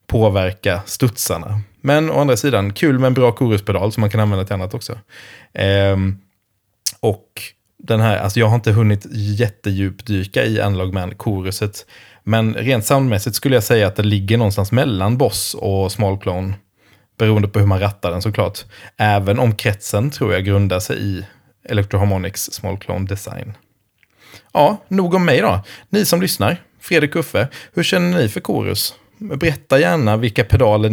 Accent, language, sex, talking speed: Swedish, English, male, 165 wpm